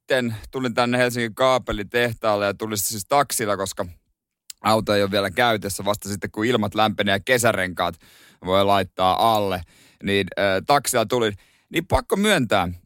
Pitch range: 110-160 Hz